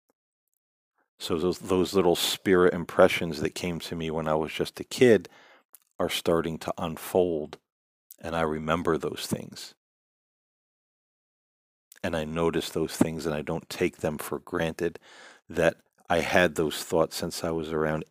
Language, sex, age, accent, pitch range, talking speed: English, male, 40-59, American, 80-90 Hz, 150 wpm